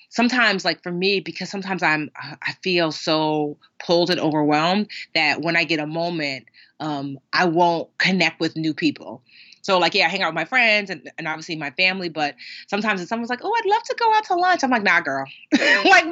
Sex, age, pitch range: female, 30-49, 155-215 Hz